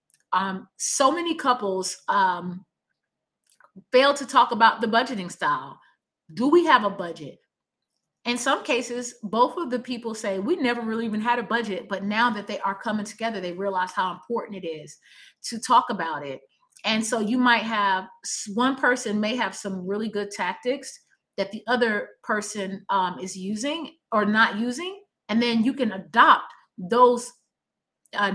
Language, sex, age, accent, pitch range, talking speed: English, female, 30-49, American, 200-255 Hz, 165 wpm